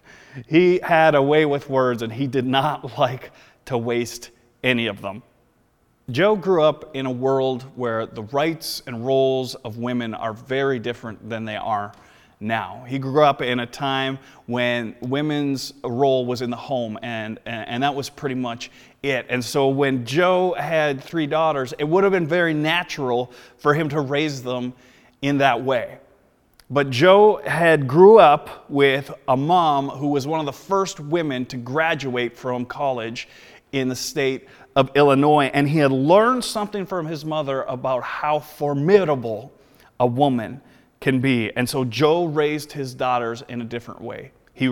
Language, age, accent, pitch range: English, 30-49, American, 125-155 Hz